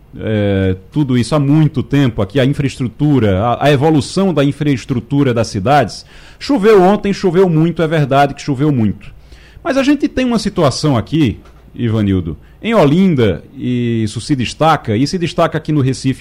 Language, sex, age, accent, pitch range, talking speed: Portuguese, male, 40-59, Brazilian, 120-170 Hz, 165 wpm